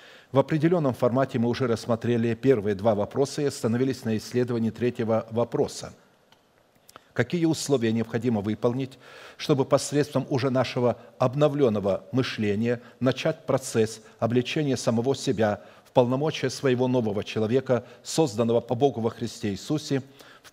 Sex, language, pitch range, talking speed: male, Russian, 115-140 Hz, 125 wpm